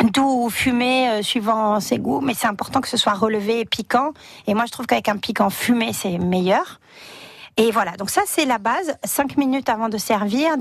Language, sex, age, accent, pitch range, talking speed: French, female, 40-59, French, 205-240 Hz, 210 wpm